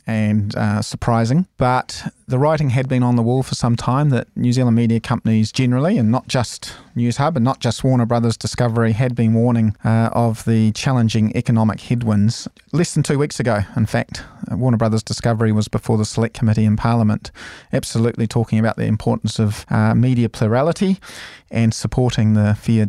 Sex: male